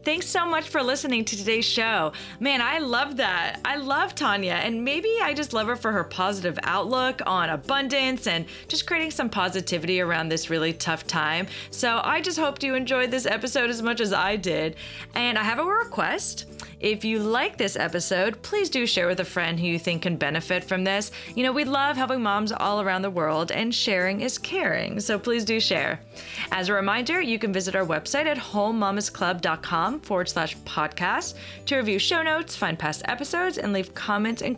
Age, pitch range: 30-49, 180-260 Hz